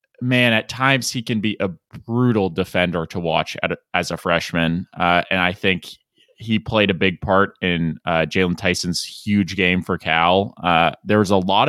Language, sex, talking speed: English, male, 185 wpm